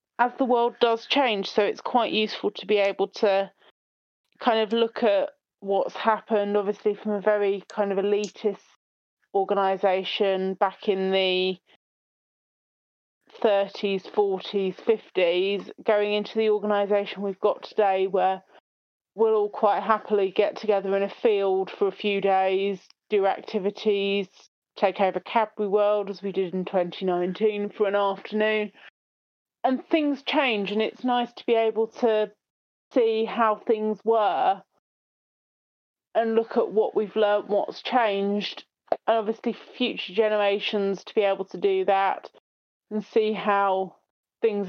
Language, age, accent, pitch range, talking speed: English, 30-49, British, 195-225 Hz, 140 wpm